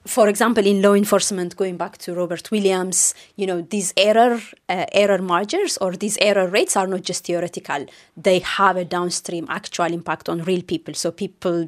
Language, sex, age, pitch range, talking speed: English, female, 20-39, 170-195 Hz, 185 wpm